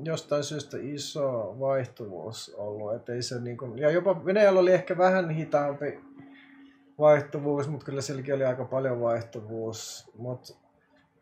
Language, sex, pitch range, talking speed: Finnish, male, 130-170 Hz, 130 wpm